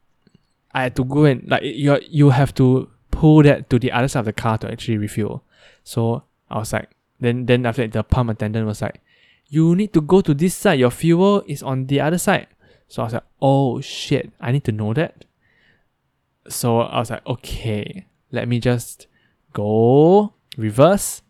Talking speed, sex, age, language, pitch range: 195 wpm, male, 10-29, English, 110-140 Hz